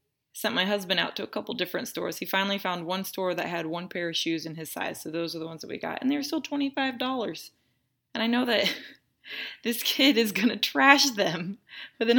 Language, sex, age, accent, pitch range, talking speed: English, female, 20-39, American, 165-205 Hz, 230 wpm